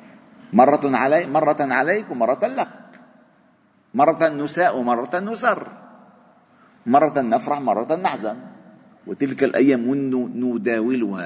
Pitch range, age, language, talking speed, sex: 110-175 Hz, 50-69, Arabic, 90 wpm, male